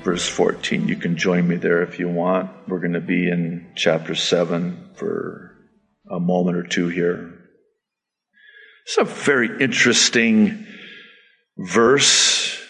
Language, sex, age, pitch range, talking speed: English, male, 50-69, 135-220 Hz, 130 wpm